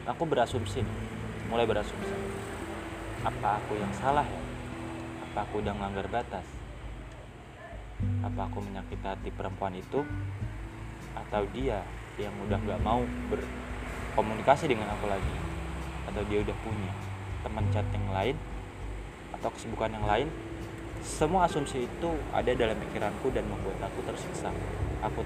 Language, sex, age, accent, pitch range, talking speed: Indonesian, male, 20-39, native, 100-115 Hz, 125 wpm